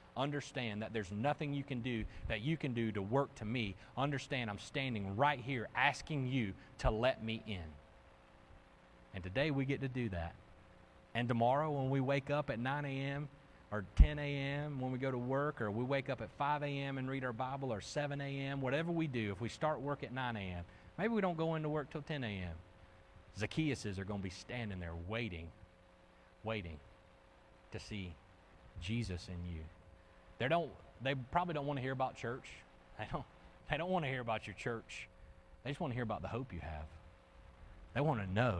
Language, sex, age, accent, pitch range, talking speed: English, male, 40-59, American, 90-135 Hz, 200 wpm